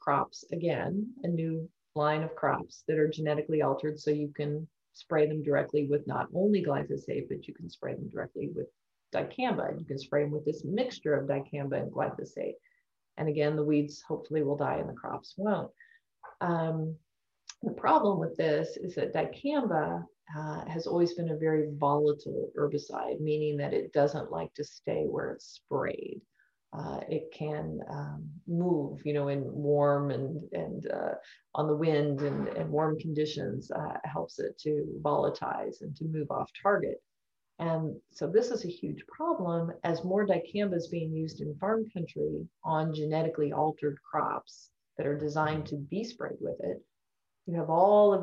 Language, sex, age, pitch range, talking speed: English, female, 30-49, 150-175 Hz, 170 wpm